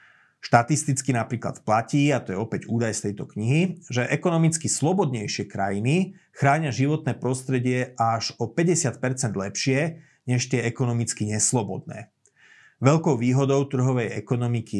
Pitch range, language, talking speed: 110-140 Hz, Slovak, 120 wpm